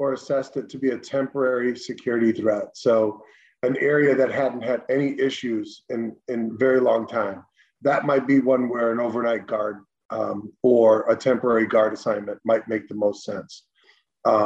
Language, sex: English, male